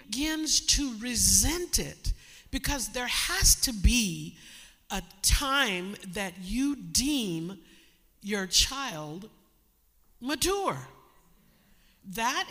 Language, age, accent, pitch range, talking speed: English, 50-69, American, 175-285 Hz, 85 wpm